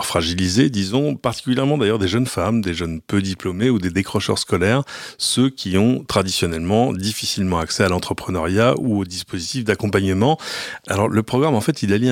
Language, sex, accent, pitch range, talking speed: French, male, French, 95-115 Hz, 170 wpm